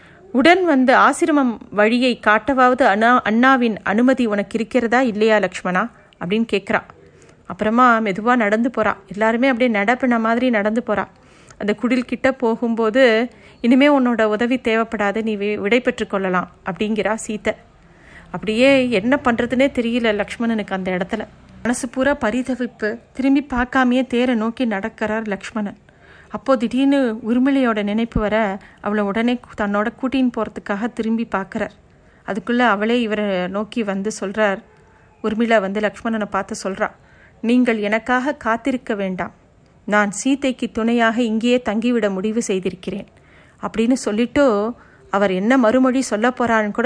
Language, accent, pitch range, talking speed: Tamil, native, 205-245 Hz, 120 wpm